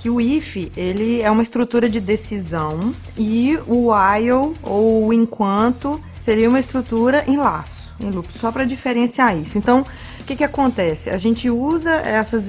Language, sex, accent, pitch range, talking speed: Portuguese, female, Brazilian, 210-255 Hz, 160 wpm